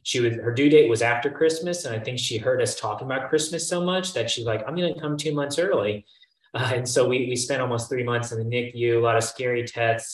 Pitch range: 105-130 Hz